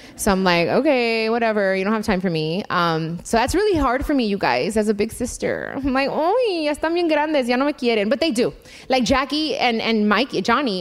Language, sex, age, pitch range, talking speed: English, female, 20-39, 210-290 Hz, 240 wpm